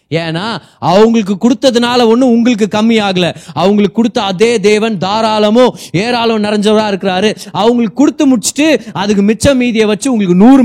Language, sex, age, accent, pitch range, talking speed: Tamil, male, 30-49, native, 160-220 Hz, 125 wpm